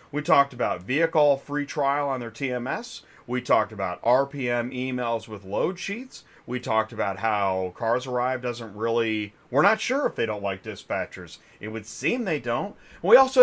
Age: 40-59